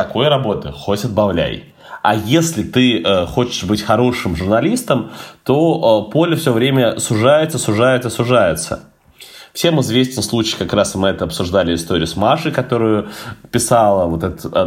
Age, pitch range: 20-39, 90-125 Hz